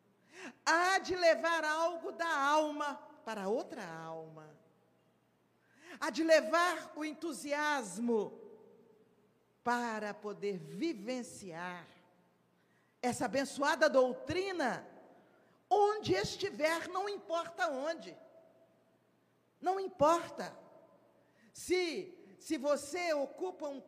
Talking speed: 80 wpm